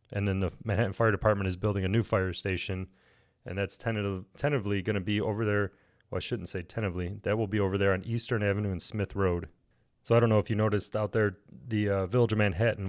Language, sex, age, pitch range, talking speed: English, male, 30-49, 95-110 Hz, 235 wpm